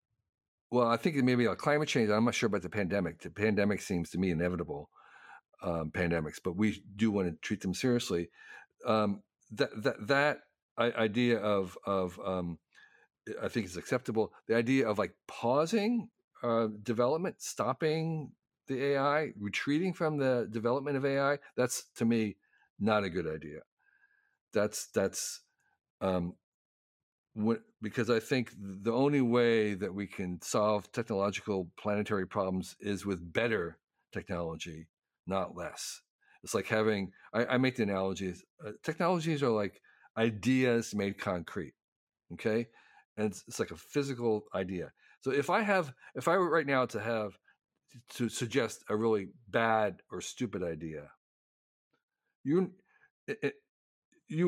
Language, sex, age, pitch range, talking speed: English, male, 50-69, 100-140 Hz, 140 wpm